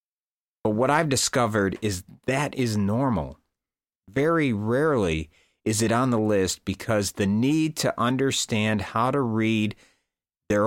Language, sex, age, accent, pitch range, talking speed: English, male, 50-69, American, 100-140 Hz, 135 wpm